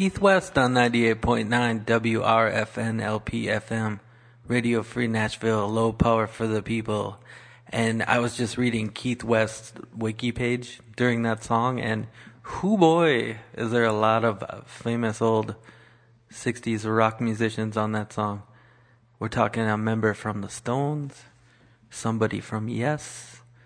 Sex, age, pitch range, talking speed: male, 20-39, 110-120 Hz, 130 wpm